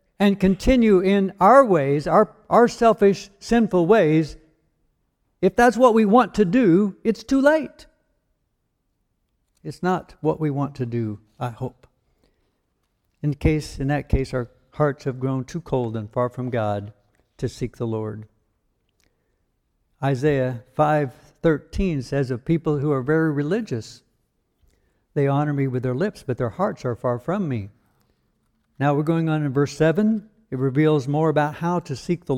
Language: English